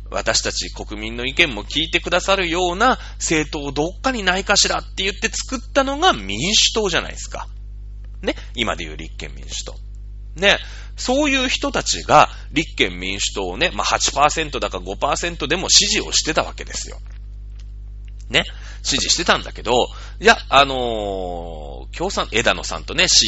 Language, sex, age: Japanese, male, 30-49